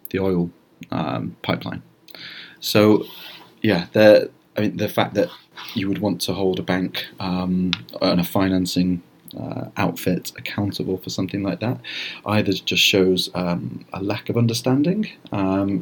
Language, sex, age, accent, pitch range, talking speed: English, male, 30-49, British, 90-105 Hz, 150 wpm